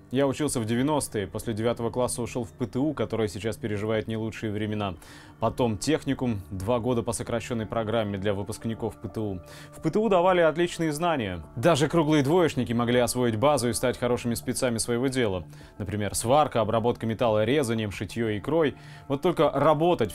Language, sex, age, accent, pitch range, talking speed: Russian, male, 20-39, native, 110-135 Hz, 160 wpm